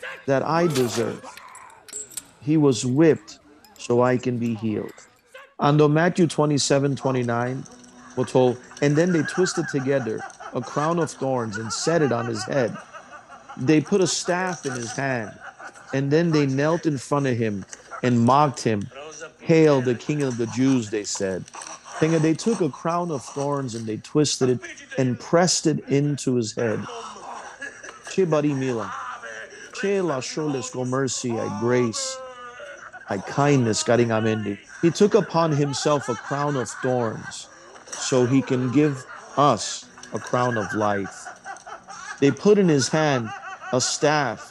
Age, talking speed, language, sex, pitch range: 40-59, 140 wpm, English, male, 120-160 Hz